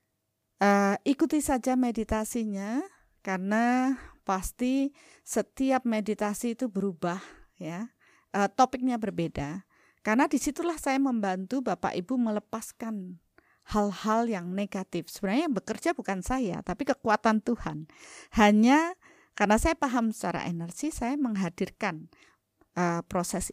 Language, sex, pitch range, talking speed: Indonesian, female, 185-250 Hz, 105 wpm